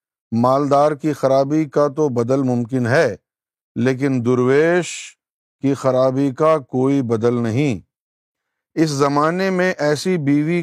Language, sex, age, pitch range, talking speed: Urdu, male, 50-69, 125-150 Hz, 120 wpm